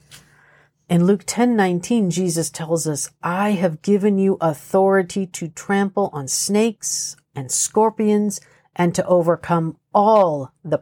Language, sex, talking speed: English, female, 130 wpm